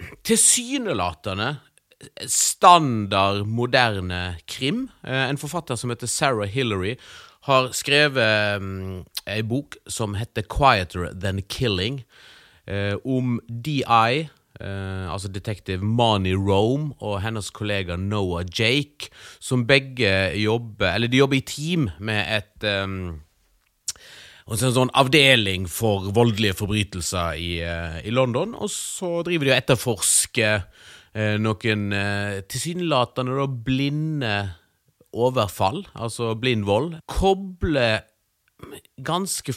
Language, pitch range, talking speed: English, 100-130 Hz, 105 wpm